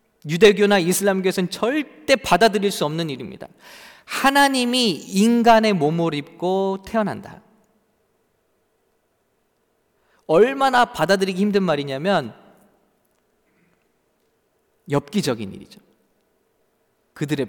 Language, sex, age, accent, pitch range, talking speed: English, male, 40-59, Korean, 165-220 Hz, 65 wpm